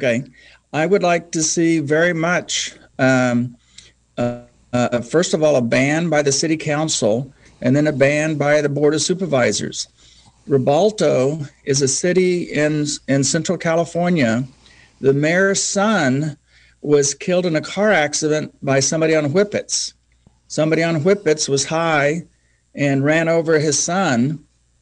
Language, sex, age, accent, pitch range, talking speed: English, male, 60-79, American, 140-175 Hz, 145 wpm